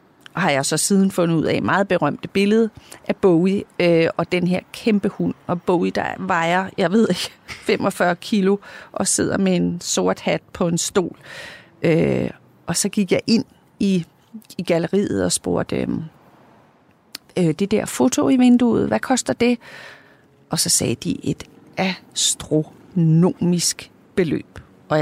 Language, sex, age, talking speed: Danish, female, 40-59, 155 wpm